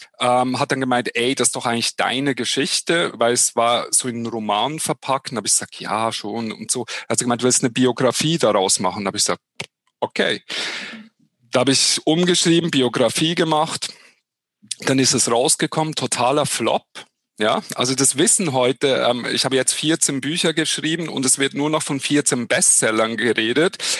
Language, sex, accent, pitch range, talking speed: German, male, German, 125-155 Hz, 195 wpm